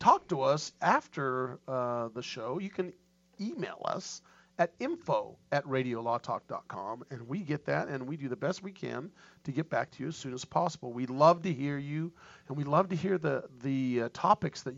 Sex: male